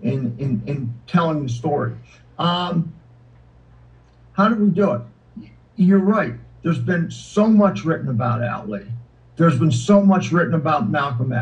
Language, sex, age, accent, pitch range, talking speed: English, male, 50-69, American, 120-195 Hz, 145 wpm